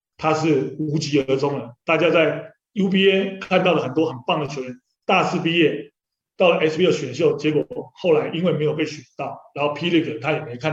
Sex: male